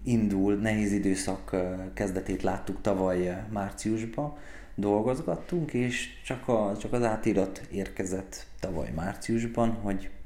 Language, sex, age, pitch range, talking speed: Hungarian, male, 30-49, 90-100 Hz, 100 wpm